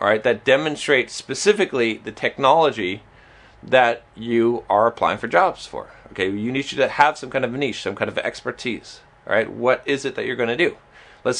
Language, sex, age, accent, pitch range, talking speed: English, male, 30-49, American, 120-145 Hz, 200 wpm